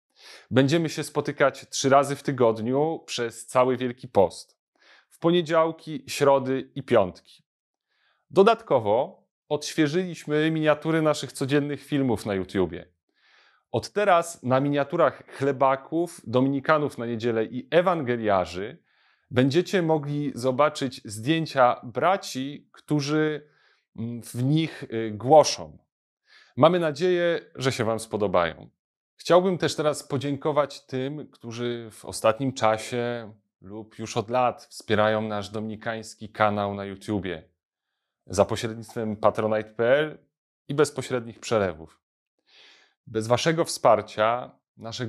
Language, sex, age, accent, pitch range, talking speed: Polish, male, 30-49, native, 110-145 Hz, 105 wpm